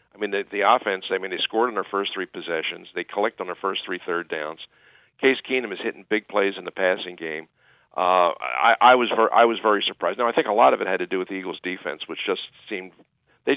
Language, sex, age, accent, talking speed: English, male, 50-69, American, 260 wpm